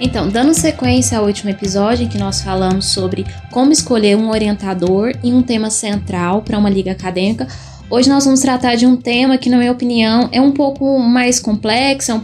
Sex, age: female, 10-29